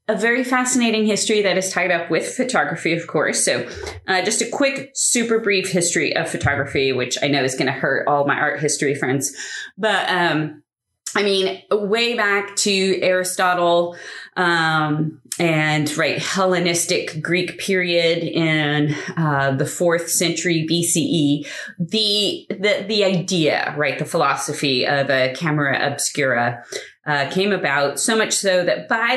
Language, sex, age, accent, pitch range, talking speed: English, female, 30-49, American, 155-210 Hz, 150 wpm